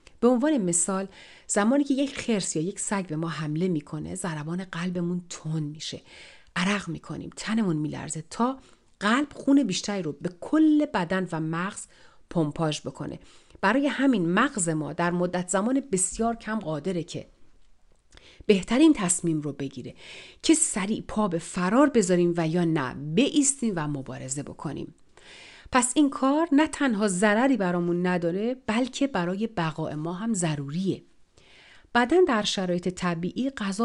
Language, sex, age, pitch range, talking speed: Persian, female, 40-59, 165-230 Hz, 145 wpm